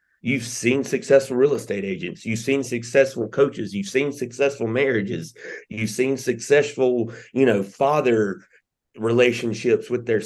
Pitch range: 105-125 Hz